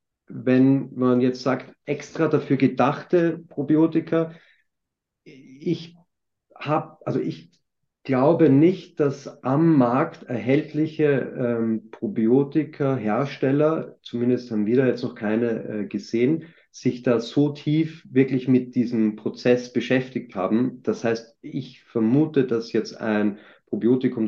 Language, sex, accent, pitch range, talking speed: German, male, German, 110-140 Hz, 120 wpm